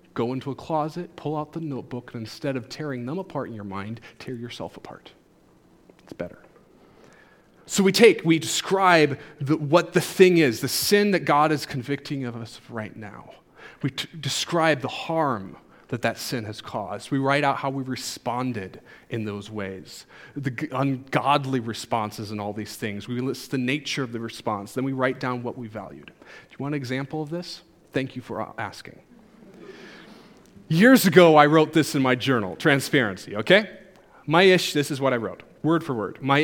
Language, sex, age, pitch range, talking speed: English, male, 30-49, 120-155 Hz, 185 wpm